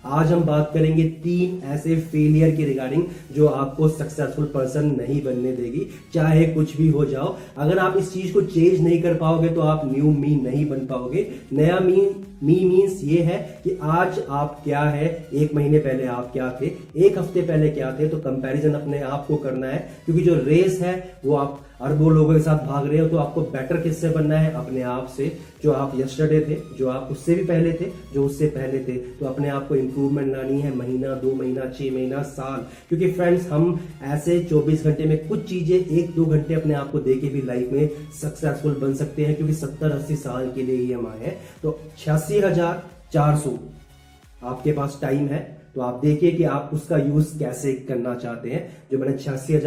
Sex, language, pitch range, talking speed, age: male, Hindi, 135-165 Hz, 170 wpm, 30-49